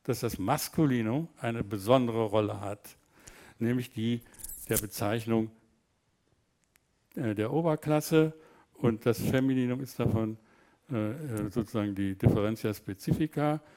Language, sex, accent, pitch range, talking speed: German, male, German, 110-140 Hz, 95 wpm